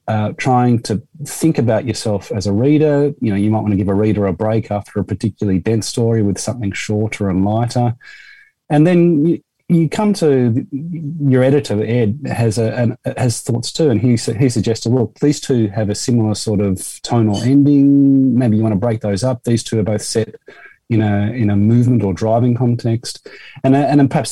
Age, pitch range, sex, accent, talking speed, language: 30-49, 110-145 Hz, male, Australian, 210 wpm, English